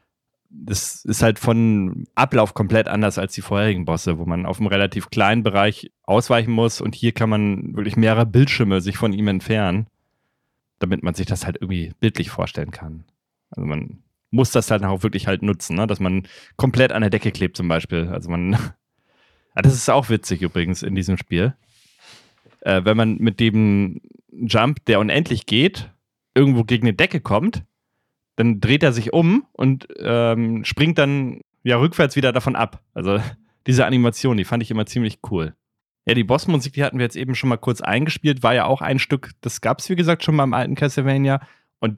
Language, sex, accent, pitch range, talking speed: German, male, German, 105-135 Hz, 190 wpm